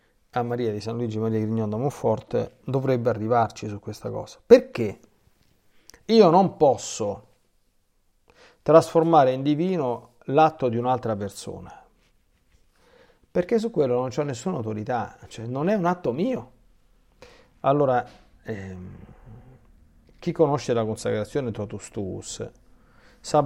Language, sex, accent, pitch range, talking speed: Italian, male, native, 110-145 Hz, 120 wpm